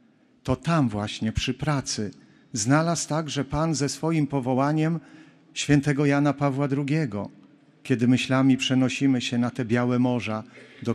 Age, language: 50-69, Polish